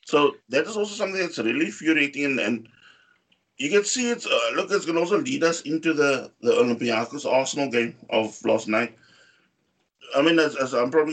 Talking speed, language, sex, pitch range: 200 wpm, English, male, 130-205 Hz